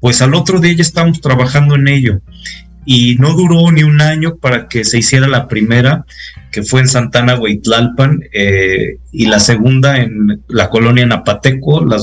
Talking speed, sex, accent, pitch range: 175 wpm, male, Mexican, 110-140 Hz